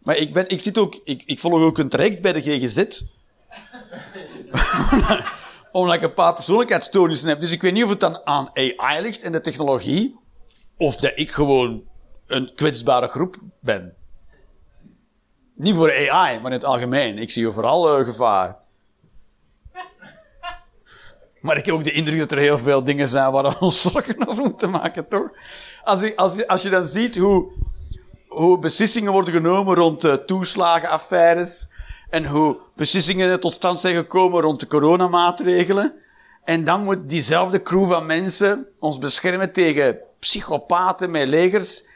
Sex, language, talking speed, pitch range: male, Dutch, 160 wpm, 155-210 Hz